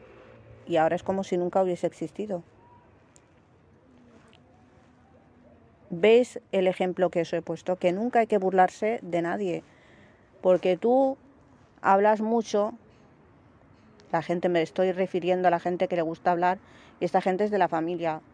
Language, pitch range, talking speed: Spanish, 175-205 Hz, 145 wpm